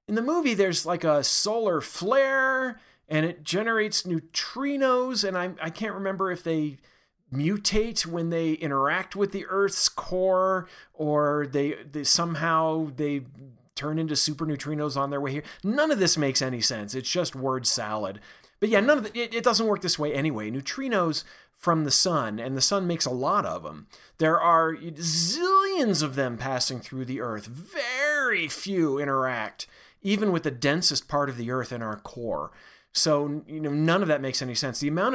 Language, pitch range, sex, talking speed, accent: English, 140-190 Hz, male, 185 wpm, American